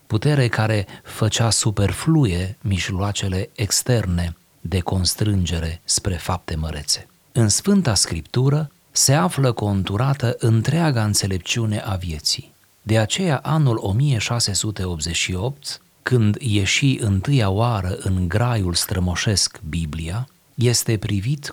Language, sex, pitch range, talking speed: Romanian, male, 100-130 Hz, 100 wpm